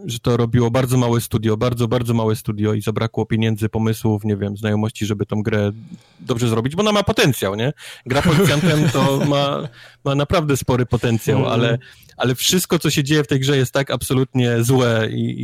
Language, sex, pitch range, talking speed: Polish, male, 120-140 Hz, 190 wpm